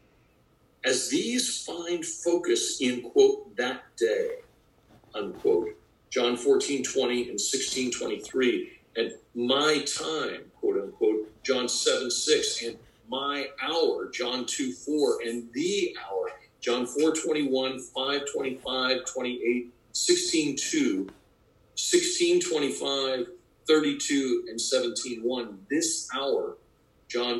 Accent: American